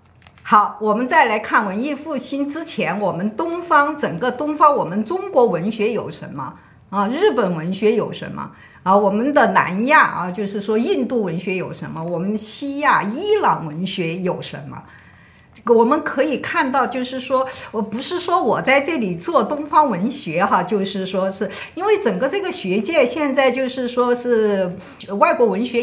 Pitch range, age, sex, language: 185-285 Hz, 50-69, female, Chinese